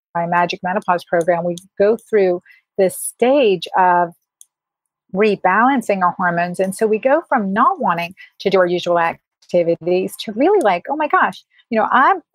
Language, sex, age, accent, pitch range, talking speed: English, female, 40-59, American, 185-230 Hz, 160 wpm